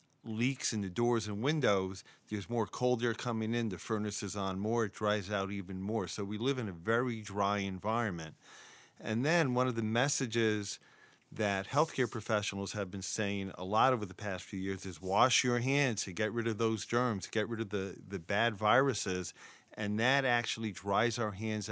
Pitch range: 100-120 Hz